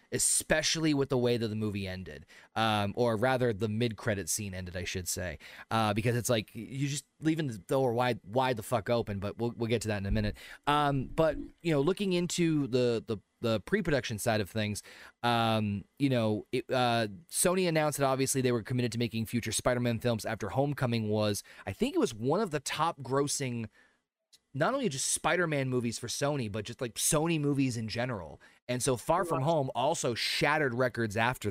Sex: male